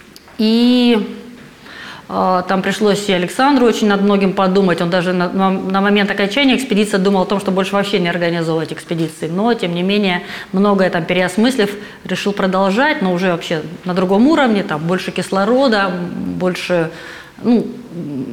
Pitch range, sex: 185-225 Hz, female